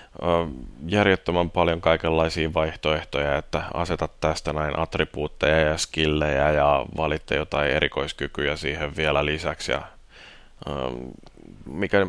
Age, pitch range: 30-49, 80-85 Hz